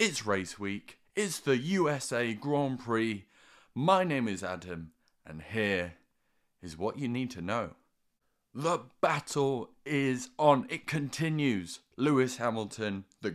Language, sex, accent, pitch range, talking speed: English, male, British, 100-130 Hz, 130 wpm